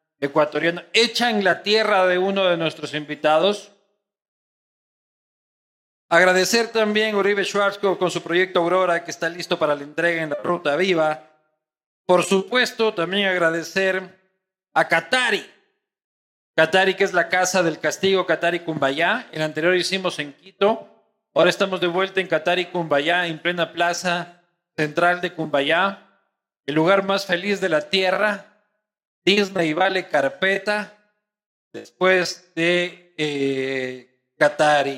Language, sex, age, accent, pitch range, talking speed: Spanish, male, 40-59, Mexican, 160-195 Hz, 125 wpm